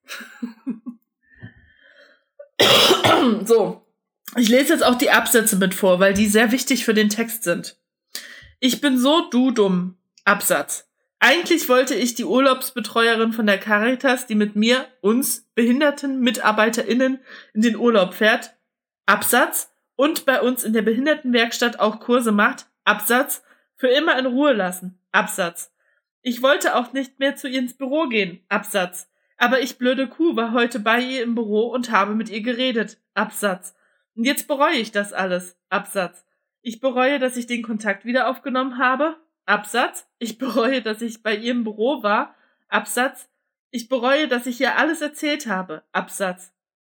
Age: 20-39